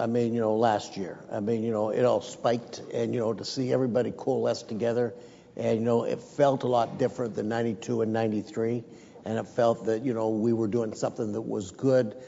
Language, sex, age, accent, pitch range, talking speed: English, male, 60-79, American, 120-140 Hz, 225 wpm